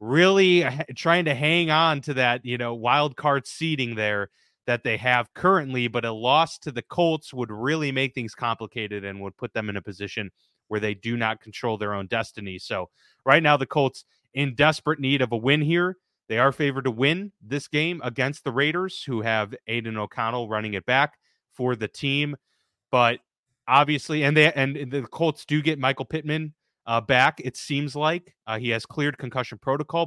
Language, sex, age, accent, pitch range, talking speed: English, male, 30-49, American, 115-145 Hz, 195 wpm